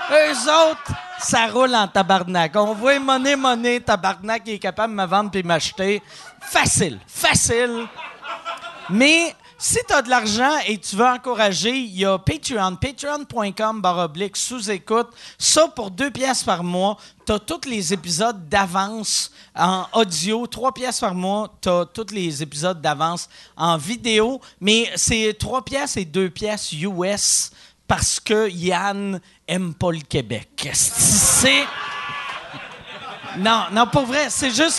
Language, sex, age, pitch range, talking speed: French, male, 40-59, 175-245 Hz, 155 wpm